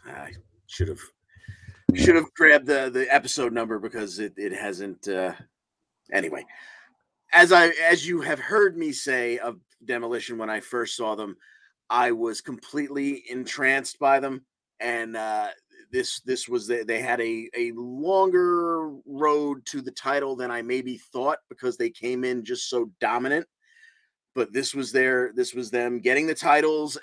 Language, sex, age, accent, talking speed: English, male, 30-49, American, 160 wpm